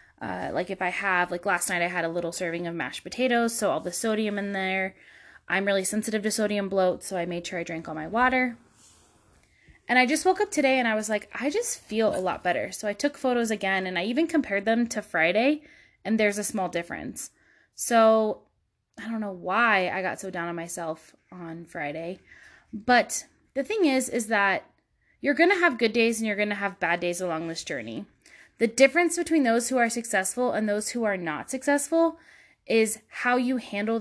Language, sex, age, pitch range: English, female, 20-39, 185-245 Hz